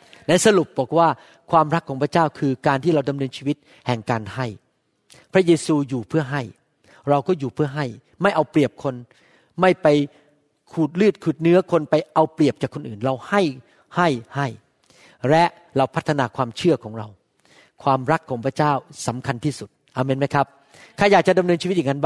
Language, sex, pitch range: Thai, male, 135-170 Hz